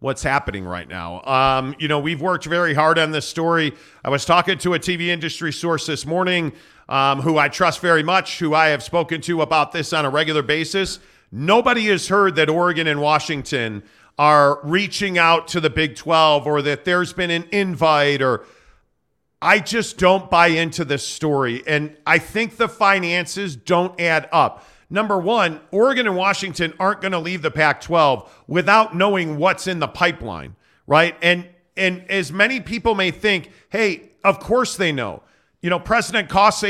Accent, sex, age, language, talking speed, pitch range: American, male, 40-59, English, 180 wpm, 155-190 Hz